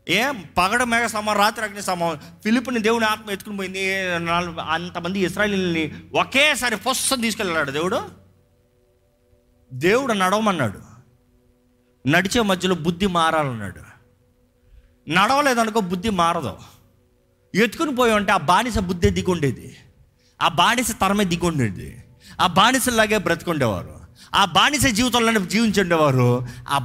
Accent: native